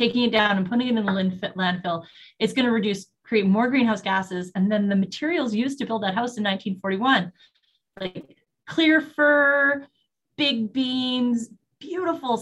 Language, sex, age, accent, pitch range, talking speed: English, female, 30-49, American, 190-250 Hz, 165 wpm